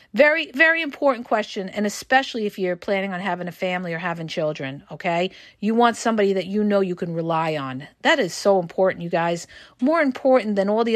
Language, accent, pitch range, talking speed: English, American, 190-275 Hz, 210 wpm